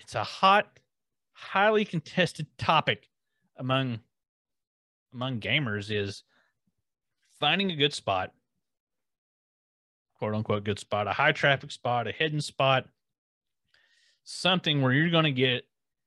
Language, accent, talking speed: English, American, 115 wpm